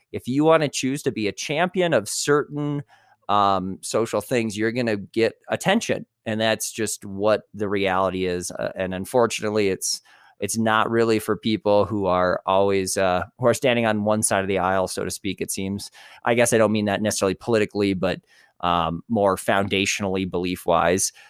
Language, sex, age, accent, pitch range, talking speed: English, male, 20-39, American, 100-130 Hz, 185 wpm